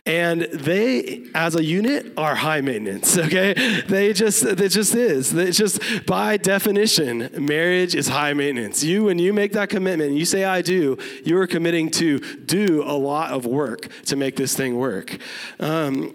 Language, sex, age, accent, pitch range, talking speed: English, male, 30-49, American, 145-190 Hz, 175 wpm